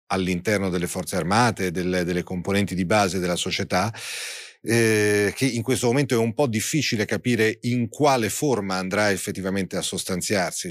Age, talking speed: 40-59, 155 wpm